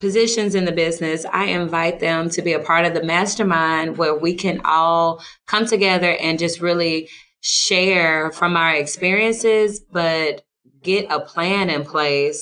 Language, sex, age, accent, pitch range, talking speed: English, female, 20-39, American, 155-185 Hz, 160 wpm